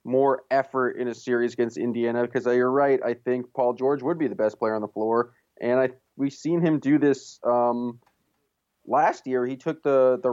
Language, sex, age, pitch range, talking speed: English, male, 20-39, 115-135 Hz, 210 wpm